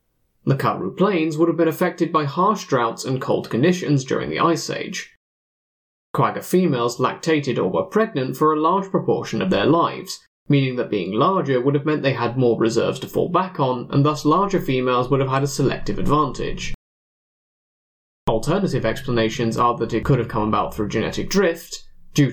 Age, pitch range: 20-39, 120-170 Hz